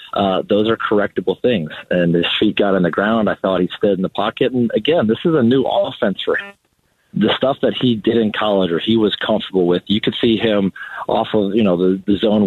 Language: English